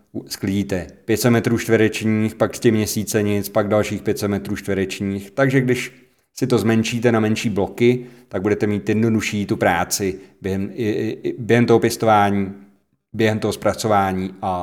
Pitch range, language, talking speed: 100-120 Hz, Czech, 155 wpm